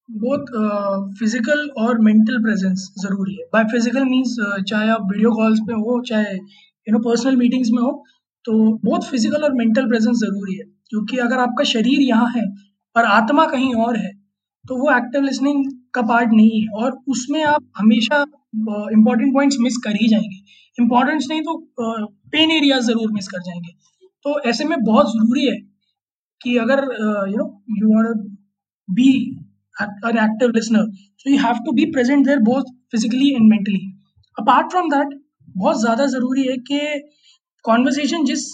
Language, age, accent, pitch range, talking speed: Hindi, 20-39, native, 210-270 Hz, 130 wpm